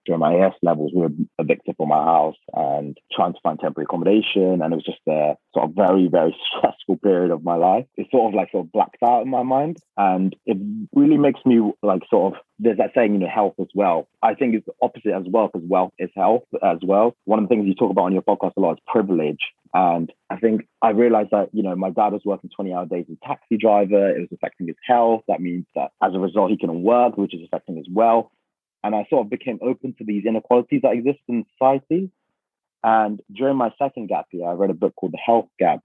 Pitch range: 95-120 Hz